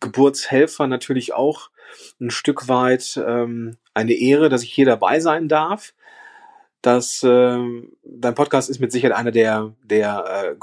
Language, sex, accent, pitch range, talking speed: German, male, German, 120-155 Hz, 140 wpm